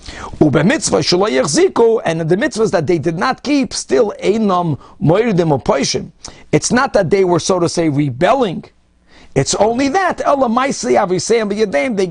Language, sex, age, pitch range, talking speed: English, male, 50-69, 165-230 Hz, 115 wpm